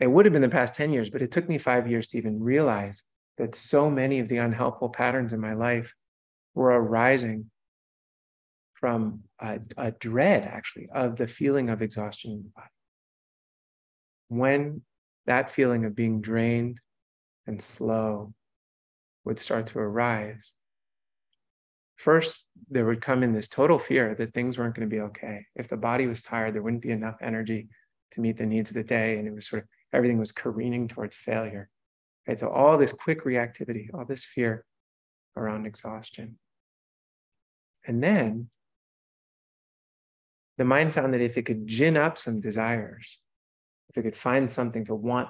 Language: English